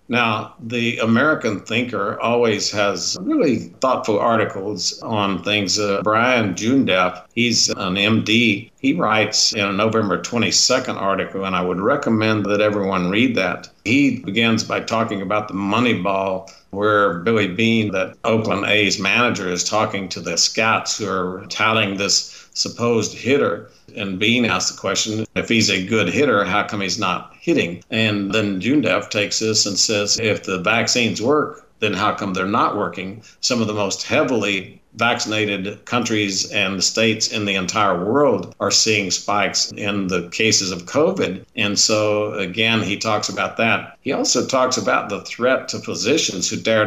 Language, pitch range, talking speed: English, 100-110 Hz, 165 wpm